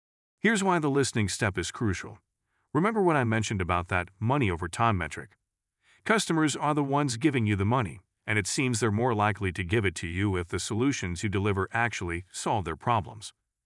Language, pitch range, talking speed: English, 95-125 Hz, 190 wpm